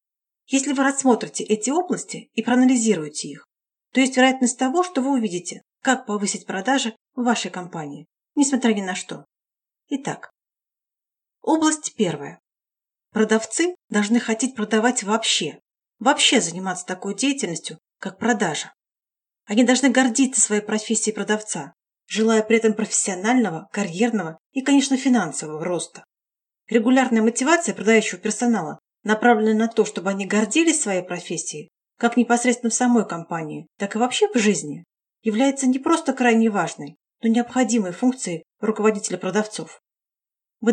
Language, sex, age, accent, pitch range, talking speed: Russian, female, 30-49, native, 205-260 Hz, 130 wpm